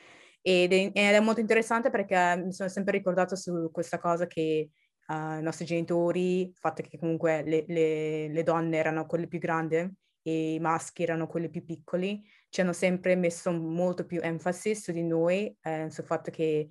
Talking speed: 180 wpm